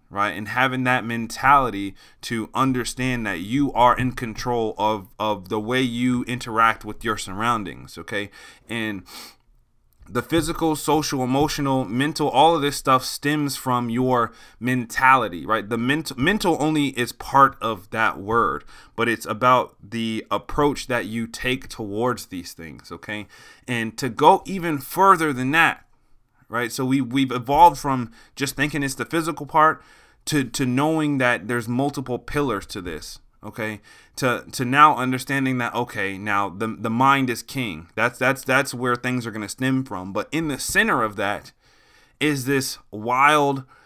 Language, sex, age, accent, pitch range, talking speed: English, male, 30-49, American, 115-140 Hz, 160 wpm